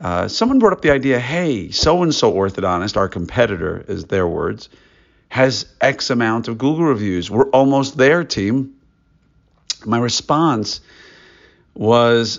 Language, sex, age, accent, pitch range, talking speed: English, male, 50-69, American, 95-135 Hz, 130 wpm